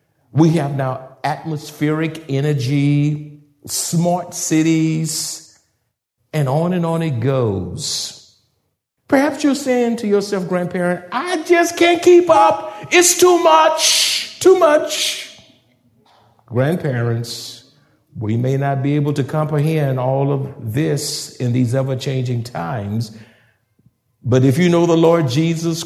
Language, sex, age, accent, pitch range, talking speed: English, male, 50-69, American, 135-175 Hz, 120 wpm